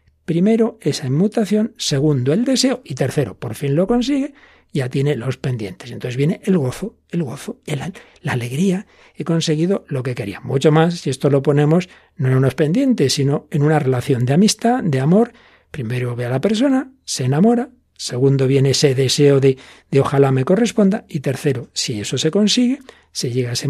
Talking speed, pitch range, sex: 190 wpm, 140-210 Hz, male